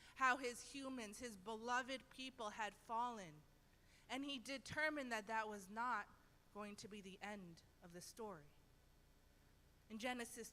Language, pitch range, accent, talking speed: English, 195-270 Hz, American, 140 wpm